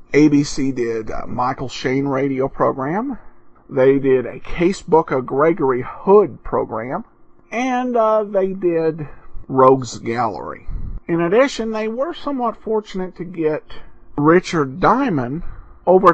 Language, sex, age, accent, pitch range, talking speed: English, male, 50-69, American, 135-190 Hz, 120 wpm